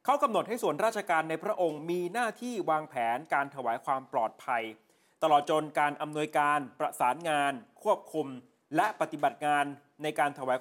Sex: male